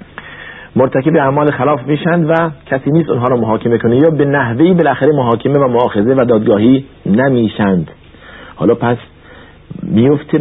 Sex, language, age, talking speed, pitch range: male, Persian, 50-69, 140 wpm, 95-145 Hz